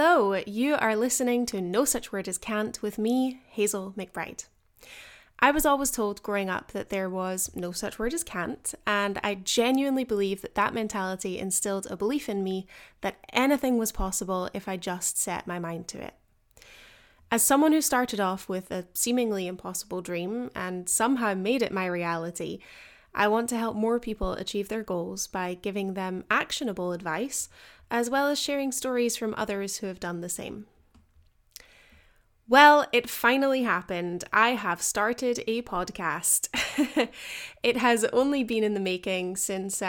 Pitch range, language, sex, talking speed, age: 185-245 Hz, English, female, 165 wpm, 10-29